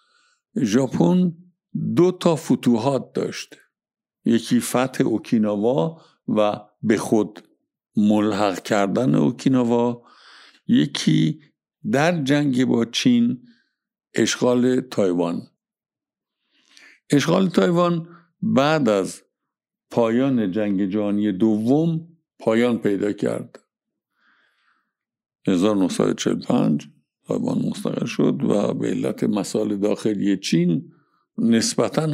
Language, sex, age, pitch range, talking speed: Persian, male, 60-79, 105-170 Hz, 80 wpm